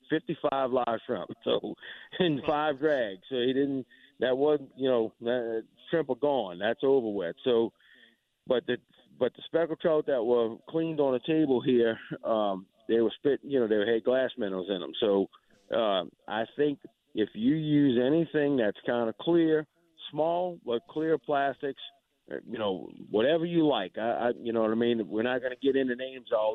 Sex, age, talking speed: male, 50-69, 190 wpm